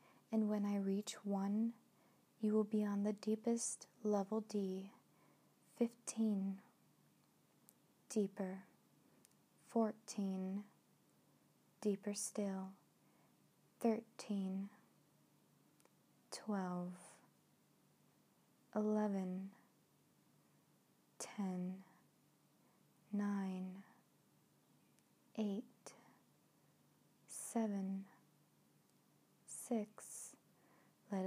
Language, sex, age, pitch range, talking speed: English, female, 20-39, 195-220 Hz, 50 wpm